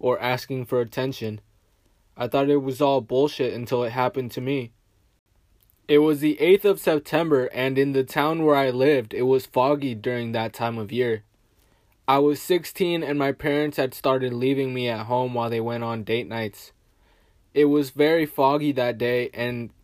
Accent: American